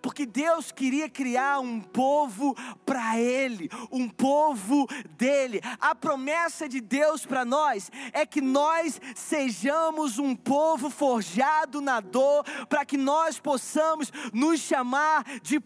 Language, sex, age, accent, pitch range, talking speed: Portuguese, male, 20-39, Brazilian, 250-305 Hz, 125 wpm